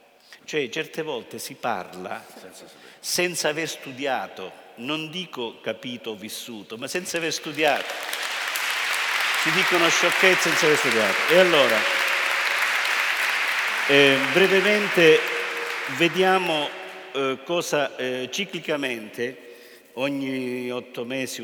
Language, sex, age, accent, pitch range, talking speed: Italian, male, 50-69, native, 125-170 Hz, 100 wpm